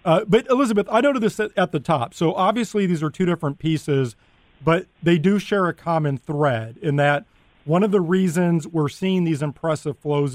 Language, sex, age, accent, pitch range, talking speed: English, male, 40-59, American, 150-195 Hz, 195 wpm